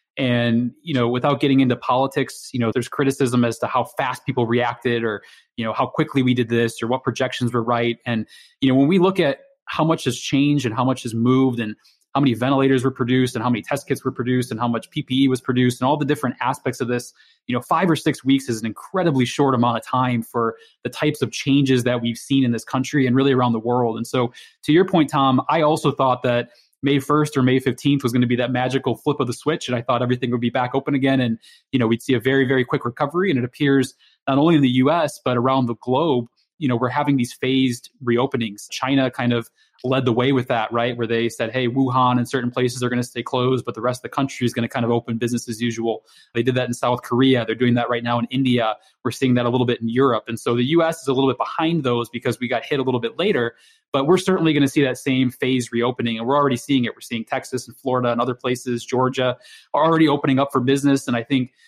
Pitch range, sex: 120-135 Hz, male